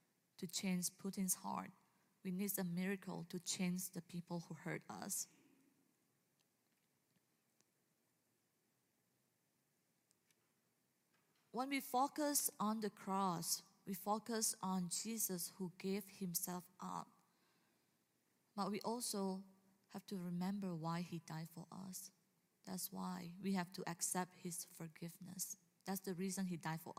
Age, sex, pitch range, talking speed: 20-39, female, 180-225 Hz, 120 wpm